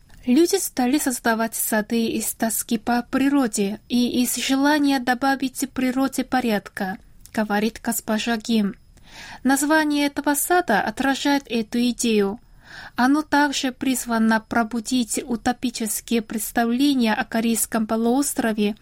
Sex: female